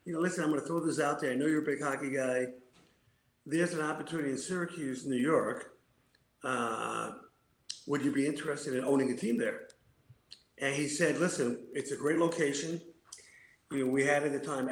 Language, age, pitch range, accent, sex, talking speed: English, 50-69, 130-155 Hz, American, male, 200 wpm